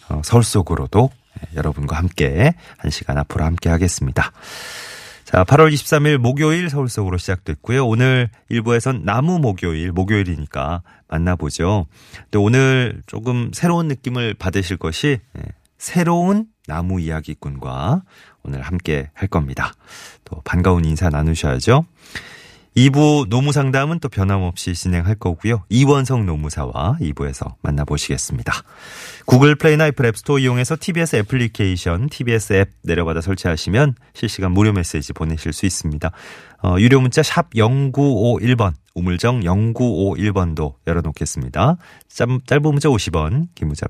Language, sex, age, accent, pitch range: Korean, male, 30-49, native, 85-130 Hz